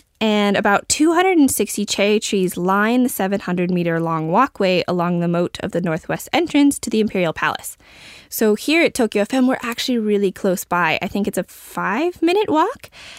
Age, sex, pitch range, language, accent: 20-39, female, 185-240 Hz, Japanese, American